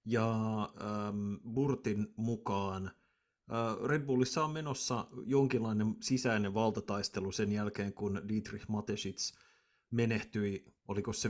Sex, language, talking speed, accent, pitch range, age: male, Finnish, 105 wpm, native, 100-110 Hz, 30-49